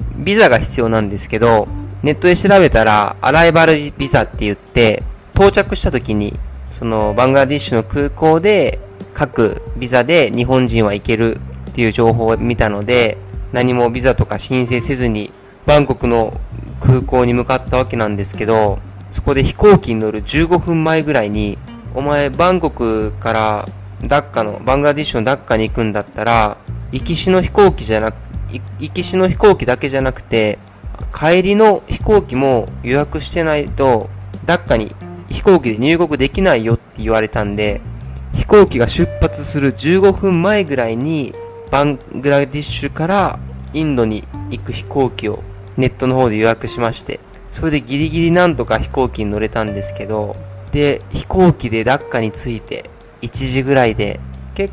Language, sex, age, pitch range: Japanese, male, 20-39, 105-145 Hz